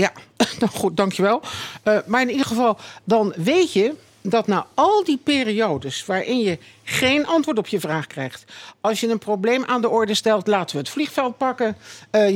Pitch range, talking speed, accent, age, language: 175-245 Hz, 185 wpm, Dutch, 50-69, Dutch